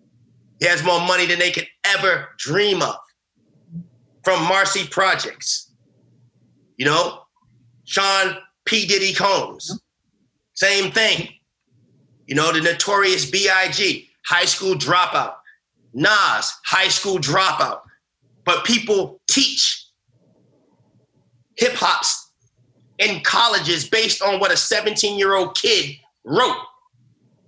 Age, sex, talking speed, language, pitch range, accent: 30-49, male, 100 wpm, English, 180-230 Hz, American